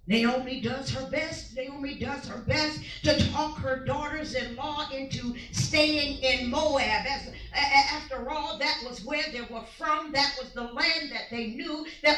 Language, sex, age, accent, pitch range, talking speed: English, female, 50-69, American, 255-320 Hz, 160 wpm